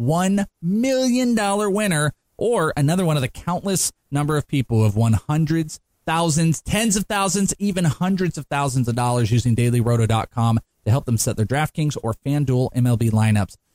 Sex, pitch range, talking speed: male, 110-160 Hz, 170 wpm